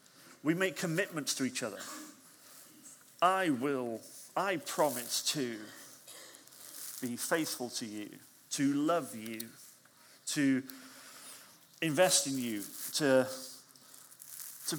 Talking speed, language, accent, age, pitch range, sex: 95 wpm, English, British, 40-59, 130-185 Hz, male